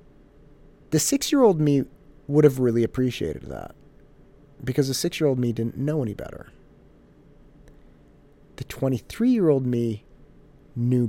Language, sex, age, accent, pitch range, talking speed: English, male, 30-49, American, 105-145 Hz, 110 wpm